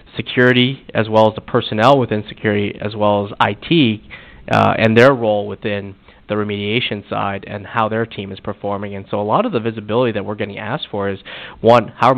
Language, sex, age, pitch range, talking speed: English, male, 20-39, 100-115 Hz, 205 wpm